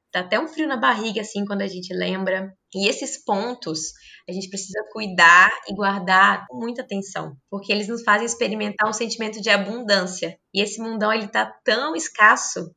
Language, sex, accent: Portuguese, female, Brazilian